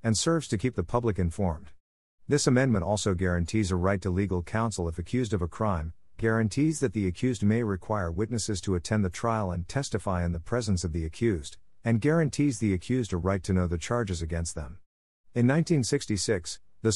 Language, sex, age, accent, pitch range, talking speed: English, male, 50-69, American, 90-115 Hz, 195 wpm